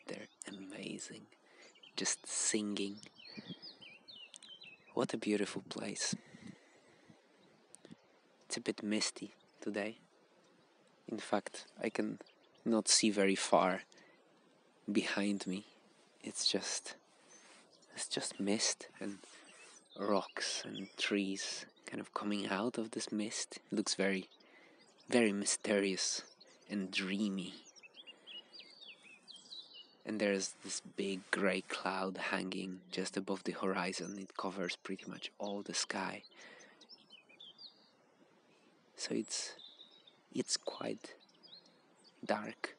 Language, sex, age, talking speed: English, male, 20-39, 95 wpm